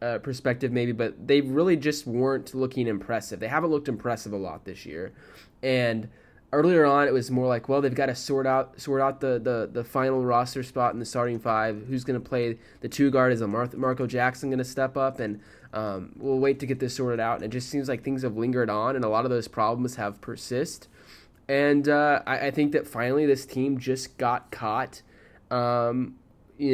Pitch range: 115-135 Hz